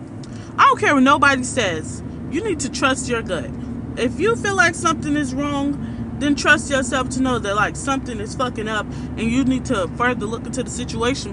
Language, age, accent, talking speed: English, 20-39, American, 205 wpm